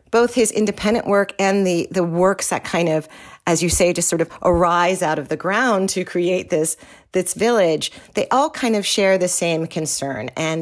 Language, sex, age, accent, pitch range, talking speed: English, female, 40-59, American, 155-195 Hz, 205 wpm